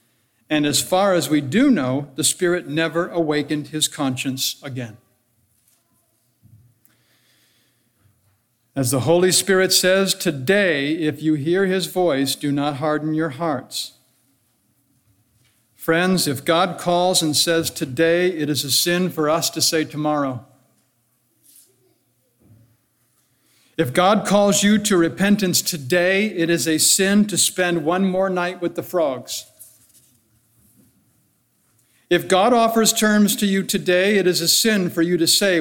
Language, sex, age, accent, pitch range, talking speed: English, male, 60-79, American, 125-185 Hz, 135 wpm